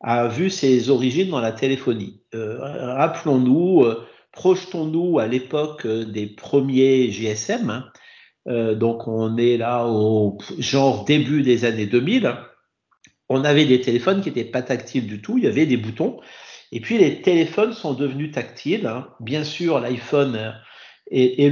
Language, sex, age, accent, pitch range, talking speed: French, male, 50-69, French, 120-160 Hz, 160 wpm